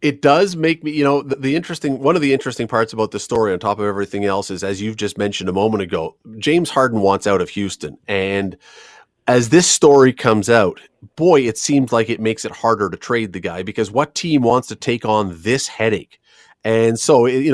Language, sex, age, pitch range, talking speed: English, male, 30-49, 110-140 Hz, 225 wpm